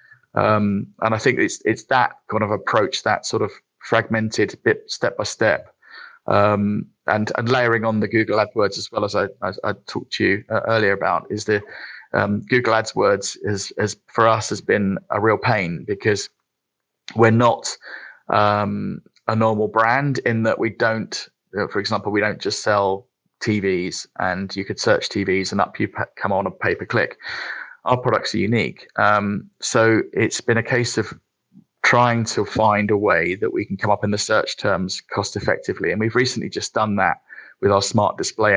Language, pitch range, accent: English, 100-115 Hz, British